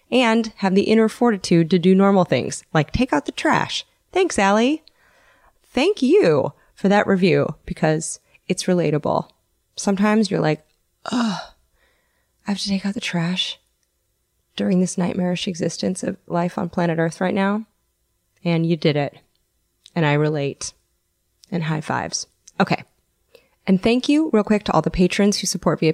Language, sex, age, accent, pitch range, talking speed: English, female, 20-39, American, 155-200 Hz, 160 wpm